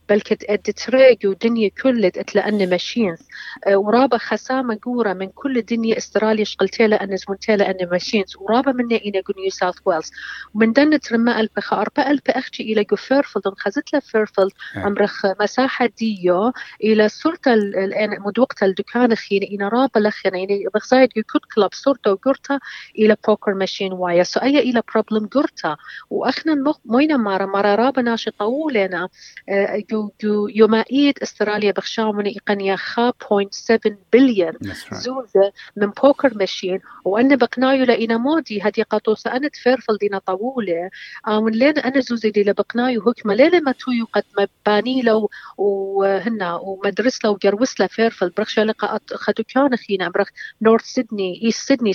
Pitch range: 200-250 Hz